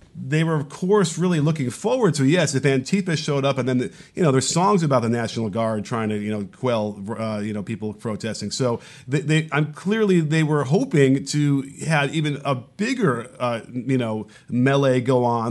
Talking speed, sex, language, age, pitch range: 205 wpm, male, English, 40-59, 125-160 Hz